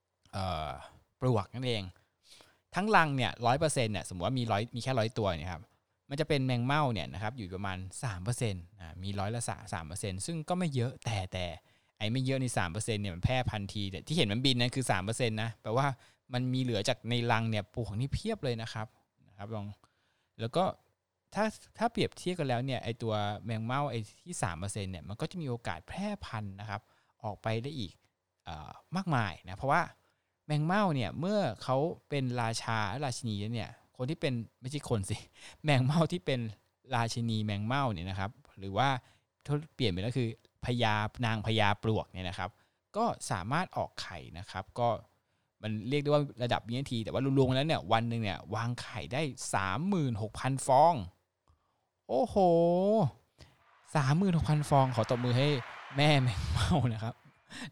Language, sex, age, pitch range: Thai, male, 20-39, 105-135 Hz